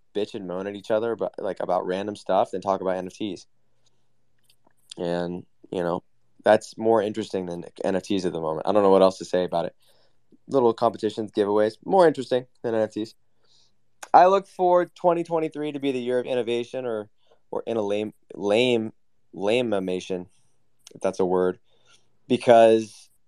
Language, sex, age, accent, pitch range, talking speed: English, male, 20-39, American, 95-125 Hz, 165 wpm